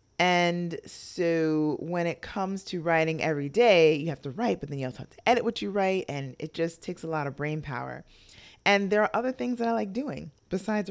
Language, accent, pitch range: English, American, 140-185 Hz